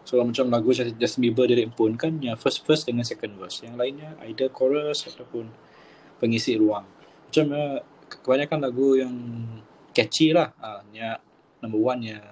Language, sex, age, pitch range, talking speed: Malay, male, 20-39, 110-140 Hz, 145 wpm